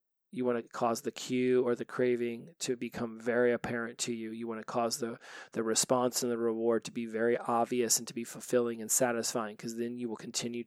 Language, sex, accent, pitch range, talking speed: English, male, American, 120-130 Hz, 225 wpm